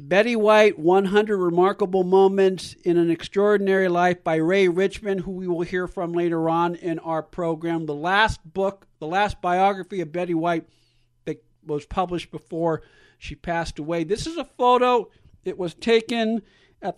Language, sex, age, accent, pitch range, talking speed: English, male, 50-69, American, 170-205 Hz, 165 wpm